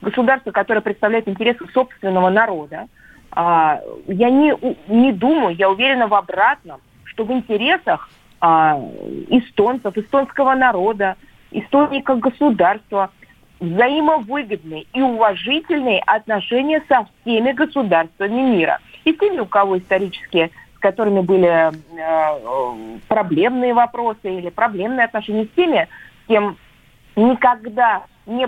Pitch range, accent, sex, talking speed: 185-255 Hz, native, female, 100 wpm